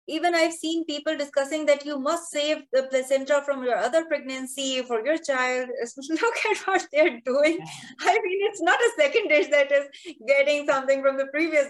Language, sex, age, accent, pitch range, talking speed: English, female, 20-39, Indian, 220-295 Hz, 190 wpm